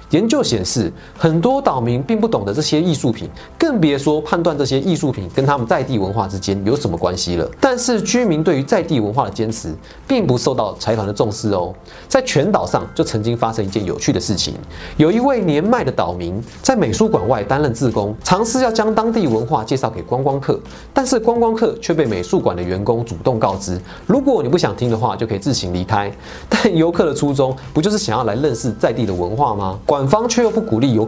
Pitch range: 110-175 Hz